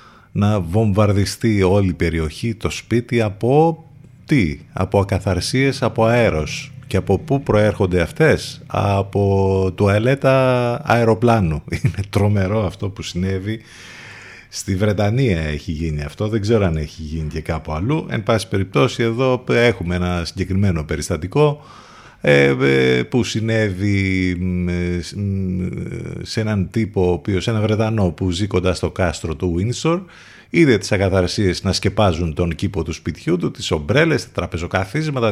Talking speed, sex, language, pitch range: 125 wpm, male, Greek, 90-110 Hz